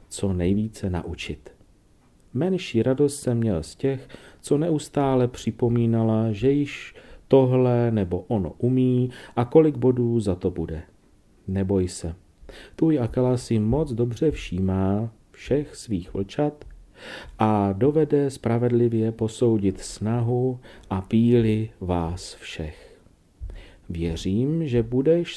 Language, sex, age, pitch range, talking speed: Czech, male, 40-59, 90-125 Hz, 110 wpm